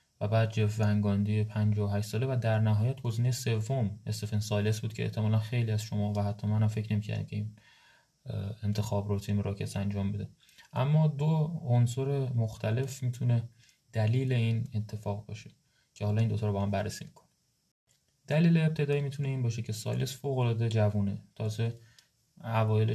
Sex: male